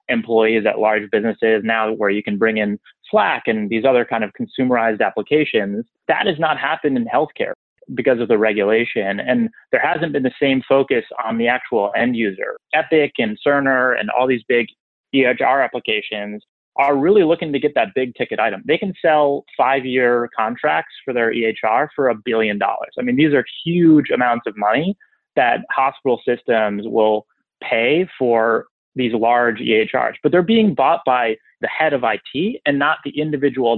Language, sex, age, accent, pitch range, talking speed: English, male, 30-49, American, 115-160 Hz, 180 wpm